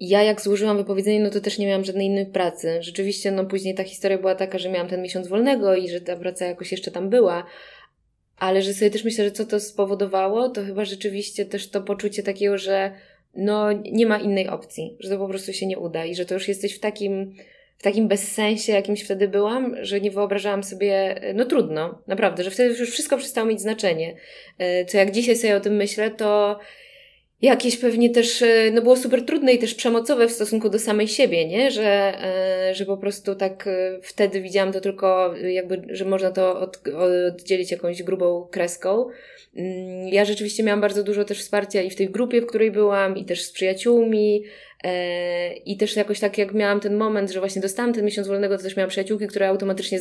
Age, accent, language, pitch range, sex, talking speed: 20-39, native, Polish, 185-210 Hz, female, 200 wpm